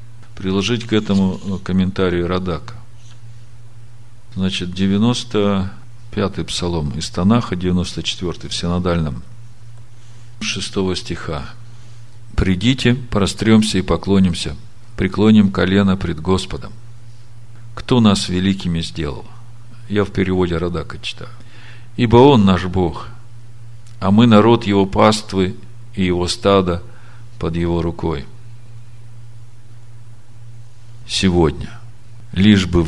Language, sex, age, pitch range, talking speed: Russian, male, 50-69, 90-115 Hz, 95 wpm